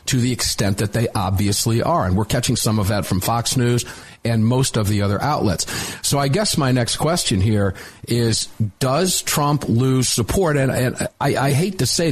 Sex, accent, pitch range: male, American, 110-140 Hz